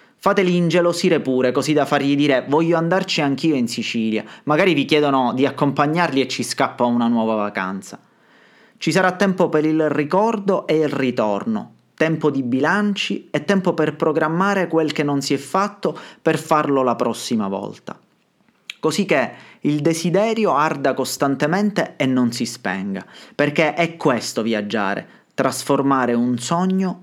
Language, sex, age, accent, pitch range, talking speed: Italian, male, 30-49, native, 130-185 Hz, 150 wpm